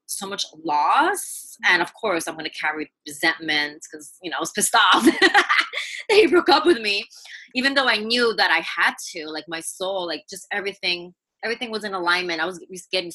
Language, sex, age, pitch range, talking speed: English, female, 20-39, 170-245 Hz, 205 wpm